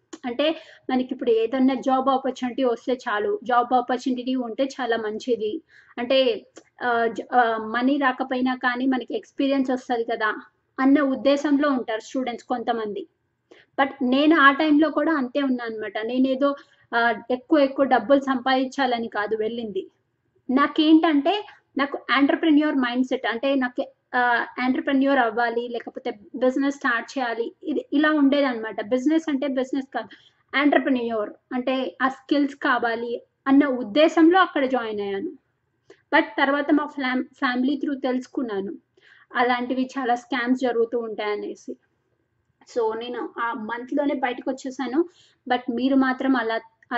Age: 20-39